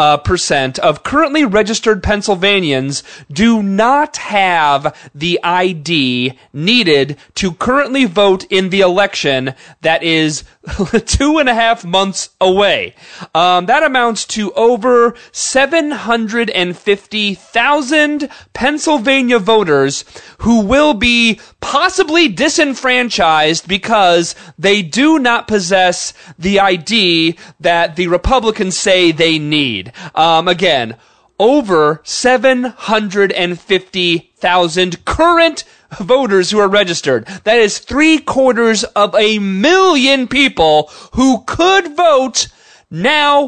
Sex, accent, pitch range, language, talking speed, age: male, American, 175-255 Hz, English, 100 wpm, 30-49